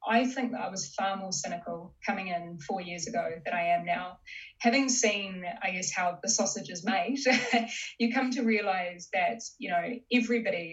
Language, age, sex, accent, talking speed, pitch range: English, 10-29, female, Australian, 190 wpm, 180-230 Hz